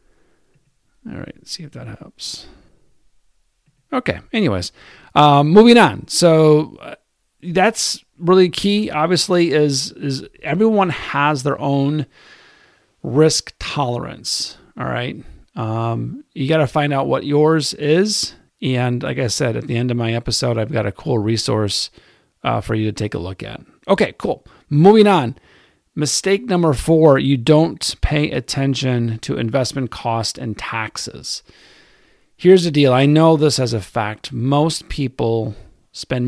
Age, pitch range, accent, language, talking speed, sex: 40-59, 120-150 Hz, American, English, 145 wpm, male